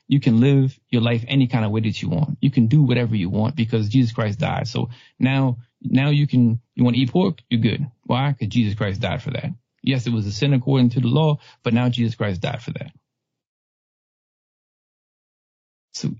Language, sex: English, male